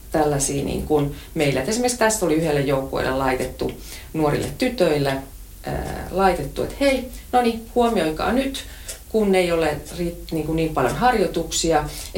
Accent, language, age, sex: native, Finnish, 30-49, female